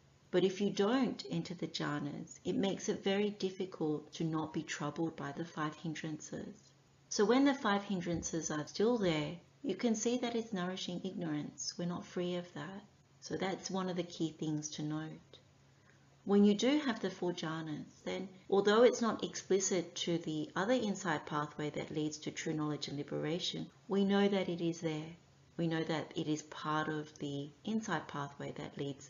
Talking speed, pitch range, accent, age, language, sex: 190 wpm, 150-190 Hz, Australian, 40-59, English, female